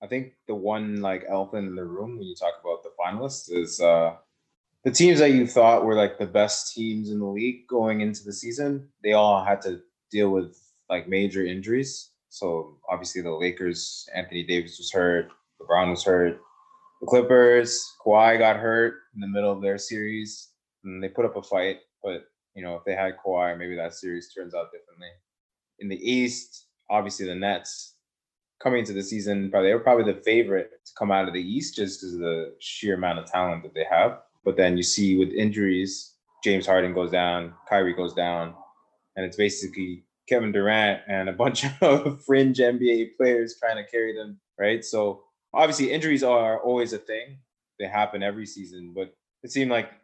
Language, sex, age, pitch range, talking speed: English, male, 20-39, 95-120 Hz, 195 wpm